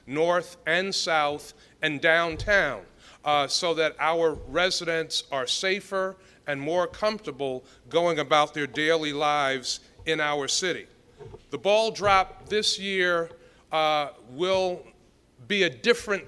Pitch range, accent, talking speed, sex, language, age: 155-185 Hz, American, 120 wpm, male, English, 40-59